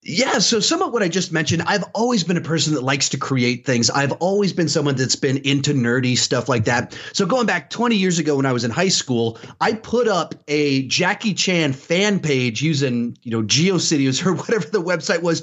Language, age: English, 30-49